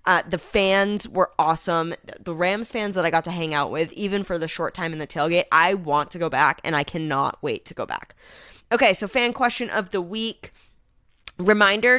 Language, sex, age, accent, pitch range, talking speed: English, female, 20-39, American, 165-220 Hz, 215 wpm